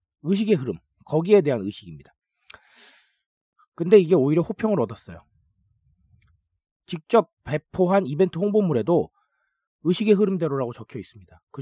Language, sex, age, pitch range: Korean, male, 40-59, 120-195 Hz